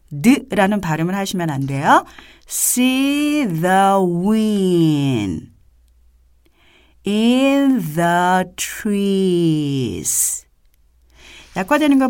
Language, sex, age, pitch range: Korean, female, 40-59, 145-215 Hz